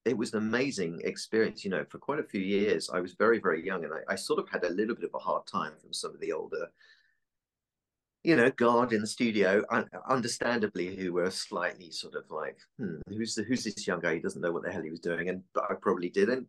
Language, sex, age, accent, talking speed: English, male, 30-49, British, 255 wpm